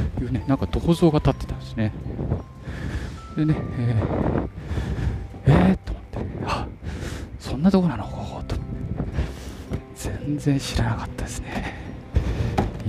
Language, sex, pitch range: Japanese, male, 95-130 Hz